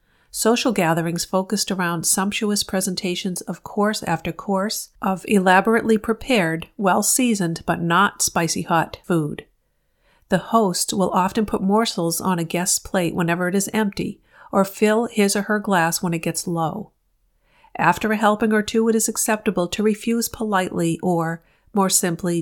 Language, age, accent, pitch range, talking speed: English, 50-69, American, 175-215 Hz, 150 wpm